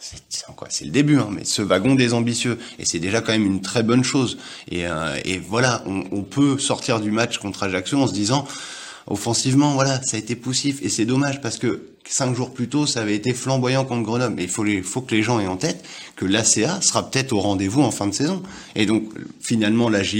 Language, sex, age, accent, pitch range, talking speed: French, male, 20-39, French, 100-130 Hz, 245 wpm